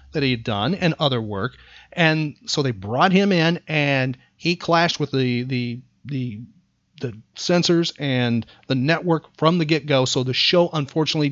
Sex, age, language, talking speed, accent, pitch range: male, 40-59, English, 160 wpm, American, 135-185 Hz